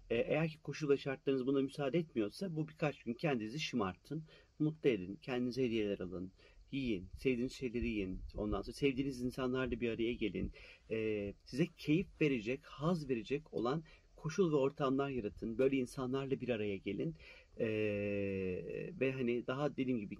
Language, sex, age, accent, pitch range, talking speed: Turkish, male, 40-59, native, 105-145 Hz, 140 wpm